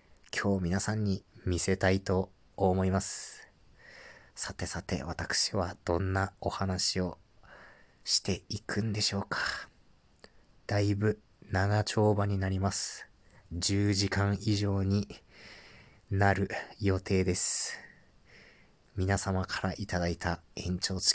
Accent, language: native, Japanese